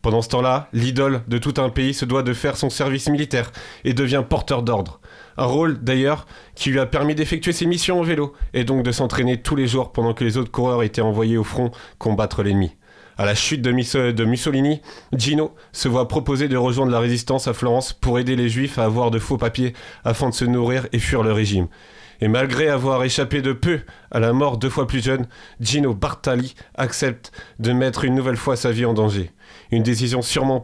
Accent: French